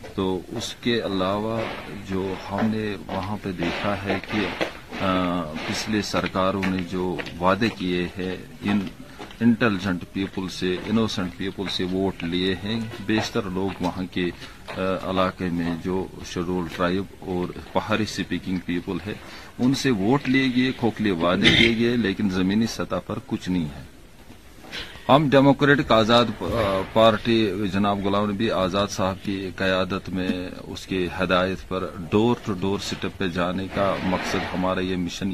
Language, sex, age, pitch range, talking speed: Urdu, male, 40-59, 90-105 Hz, 145 wpm